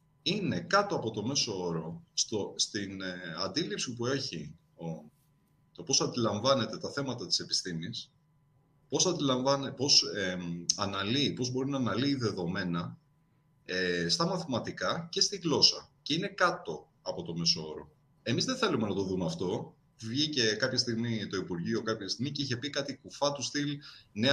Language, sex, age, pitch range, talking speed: Greek, male, 30-49, 105-145 Hz, 155 wpm